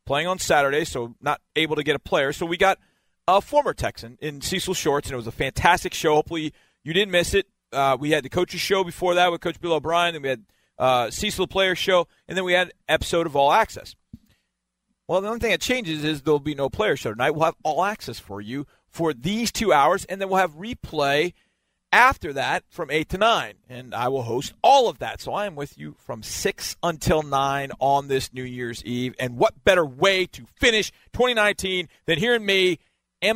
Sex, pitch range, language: male, 135-185 Hz, English